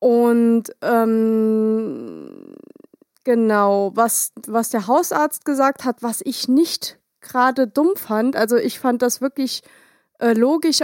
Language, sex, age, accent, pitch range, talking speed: German, female, 30-49, German, 220-255 Hz, 120 wpm